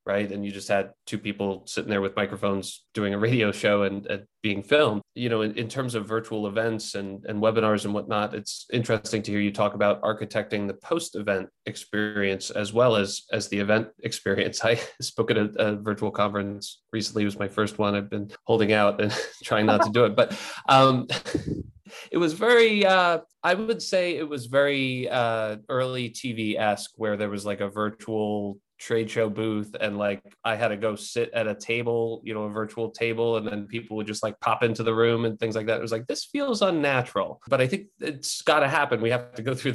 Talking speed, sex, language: 215 wpm, male, English